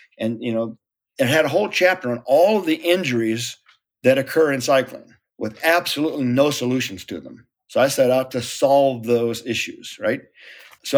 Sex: male